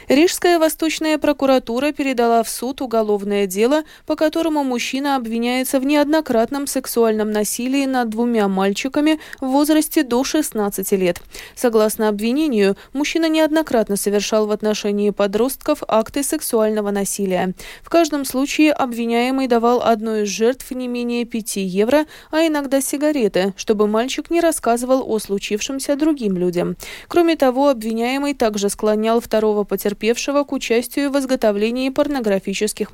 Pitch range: 215-285 Hz